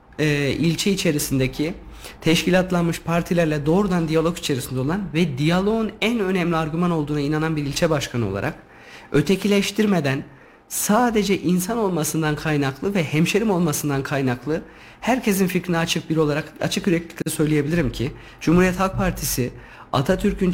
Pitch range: 150-190 Hz